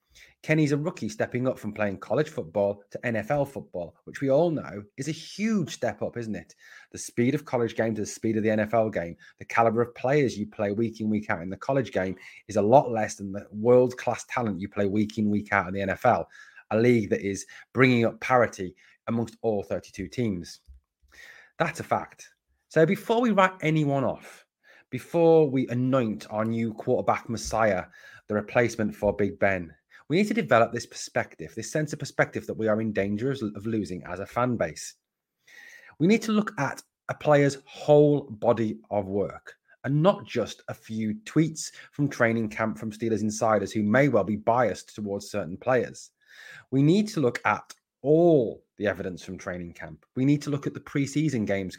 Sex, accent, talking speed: male, British, 195 wpm